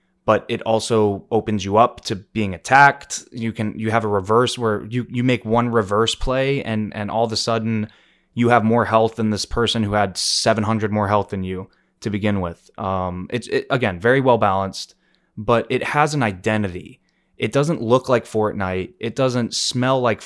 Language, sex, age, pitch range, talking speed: English, male, 20-39, 105-125 Hz, 195 wpm